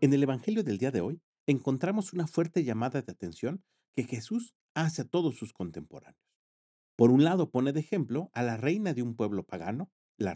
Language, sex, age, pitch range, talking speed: Spanish, male, 40-59, 110-160 Hz, 195 wpm